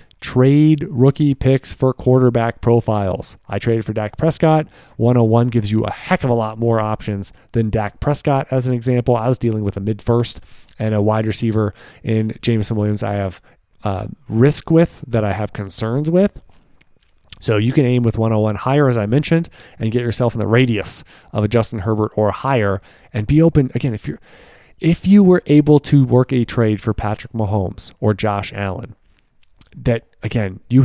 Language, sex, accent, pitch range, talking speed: English, male, American, 105-130 Hz, 185 wpm